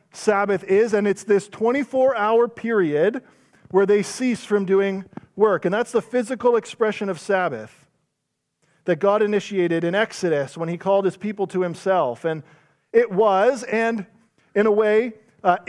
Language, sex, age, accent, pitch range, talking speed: English, male, 40-59, American, 175-225 Hz, 155 wpm